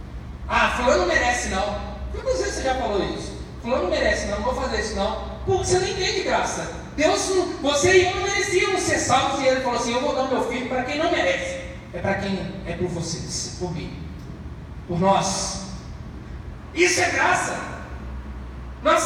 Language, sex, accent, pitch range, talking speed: Portuguese, male, Brazilian, 205-350 Hz, 190 wpm